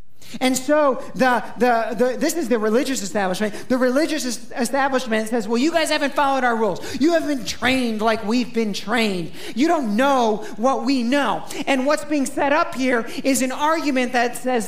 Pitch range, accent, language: 225-280 Hz, American, English